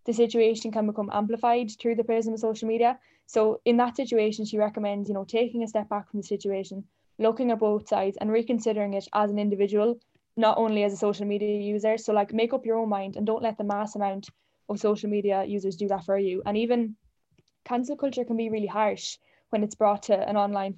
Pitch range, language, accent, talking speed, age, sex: 205-225 Hz, English, Irish, 225 wpm, 10-29, female